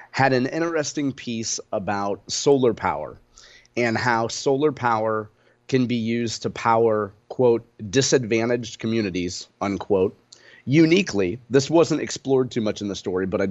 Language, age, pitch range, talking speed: English, 30-49, 105-125 Hz, 140 wpm